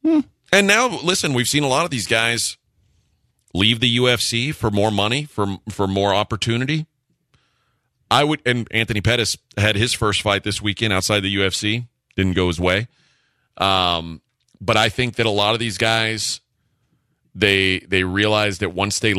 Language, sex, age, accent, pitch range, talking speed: English, male, 40-59, American, 100-125 Hz, 170 wpm